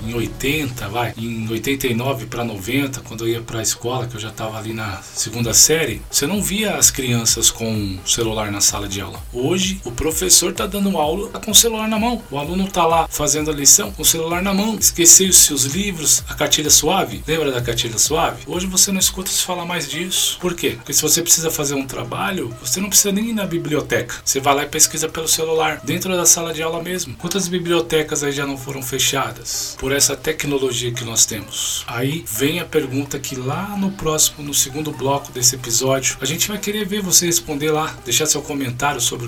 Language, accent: Portuguese, Brazilian